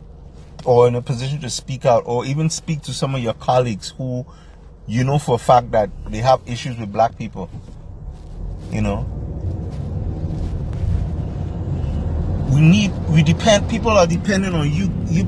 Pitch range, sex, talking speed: 85-135 Hz, male, 155 wpm